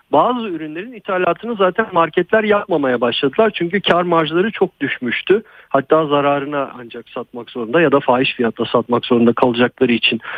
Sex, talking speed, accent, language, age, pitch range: male, 145 wpm, native, Turkish, 50-69, 130-200 Hz